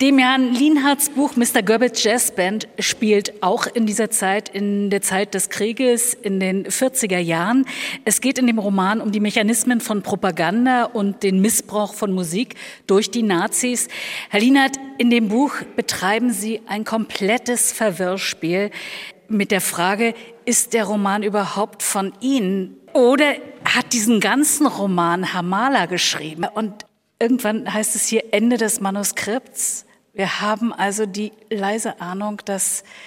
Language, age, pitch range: German, 50-69, 195-230 Hz